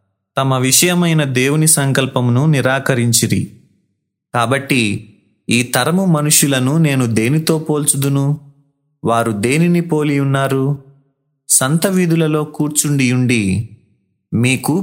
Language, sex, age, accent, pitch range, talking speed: Telugu, male, 30-49, native, 120-155 Hz, 75 wpm